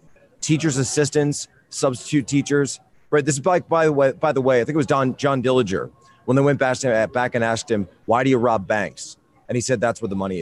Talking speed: 240 wpm